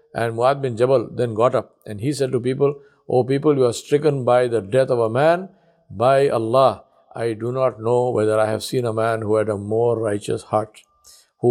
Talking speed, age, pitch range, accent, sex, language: 220 wpm, 50-69, 110-130 Hz, Indian, male, English